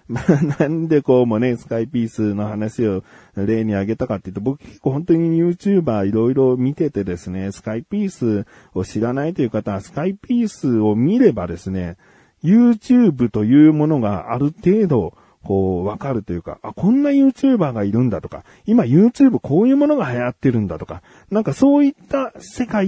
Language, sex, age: Japanese, male, 40-59